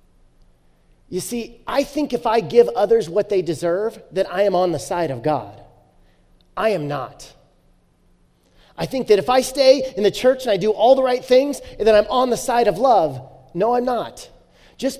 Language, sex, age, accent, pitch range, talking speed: English, male, 30-49, American, 135-215 Hz, 200 wpm